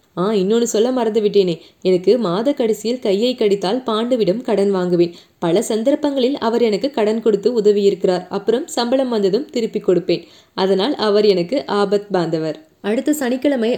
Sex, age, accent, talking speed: female, 20-39, native, 145 wpm